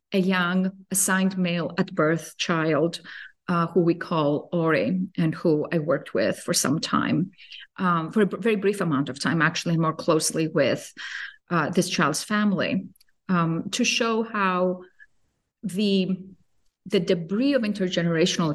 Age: 30-49